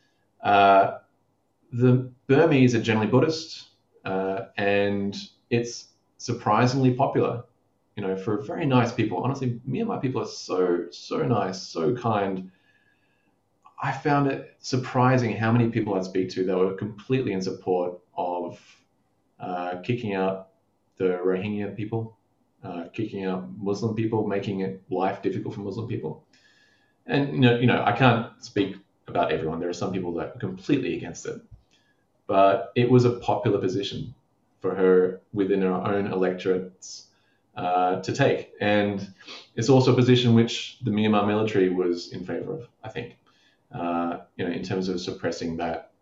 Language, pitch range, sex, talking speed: English, 95-120 Hz, male, 155 wpm